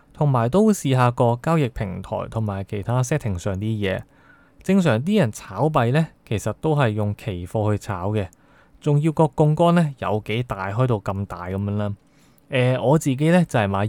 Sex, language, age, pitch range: male, Chinese, 20-39, 105-145 Hz